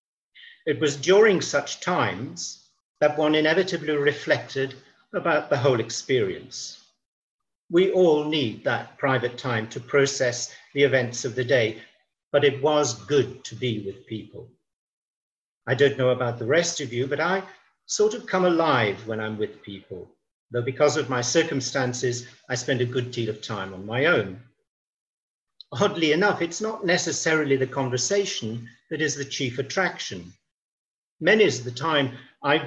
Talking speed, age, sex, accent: 155 wpm, 50-69, male, British